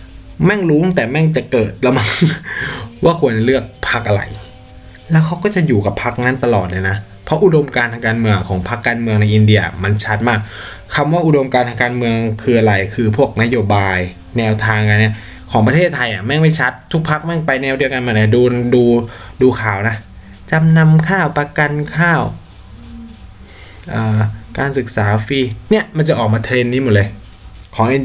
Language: Thai